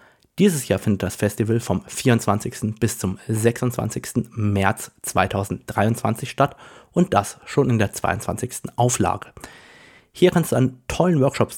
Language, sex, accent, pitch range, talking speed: German, male, German, 105-130 Hz, 135 wpm